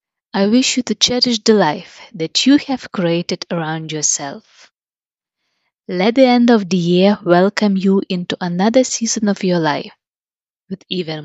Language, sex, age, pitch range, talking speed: English, female, 20-39, 175-245 Hz, 155 wpm